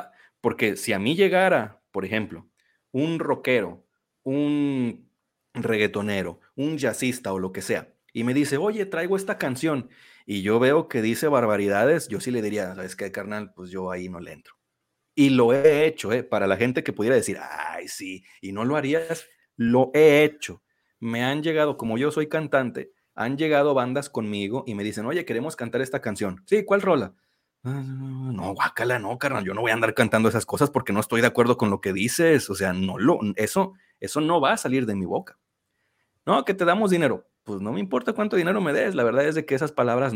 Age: 40-59